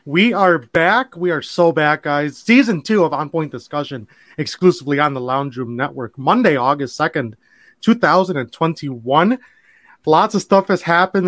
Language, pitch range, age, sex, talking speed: English, 140-190 Hz, 30-49, male, 155 wpm